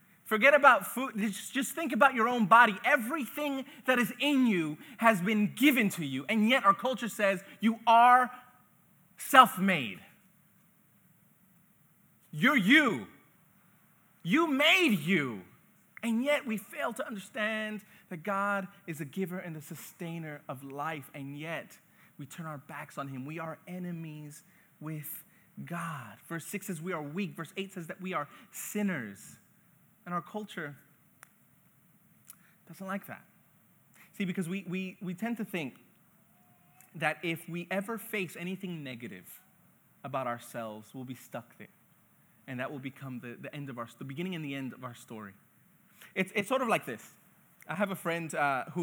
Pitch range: 155-210 Hz